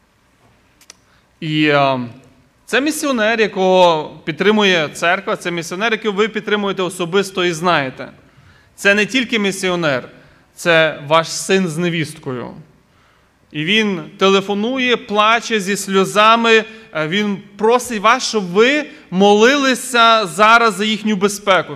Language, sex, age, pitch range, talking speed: Ukrainian, male, 20-39, 165-220 Hz, 110 wpm